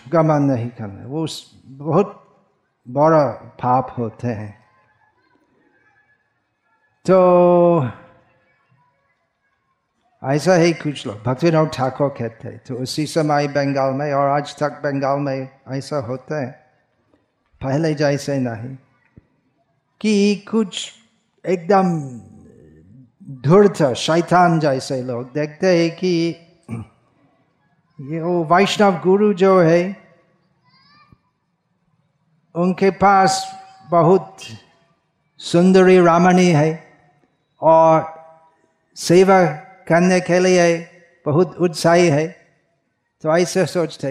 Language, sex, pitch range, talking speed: Hindi, male, 140-180 Hz, 95 wpm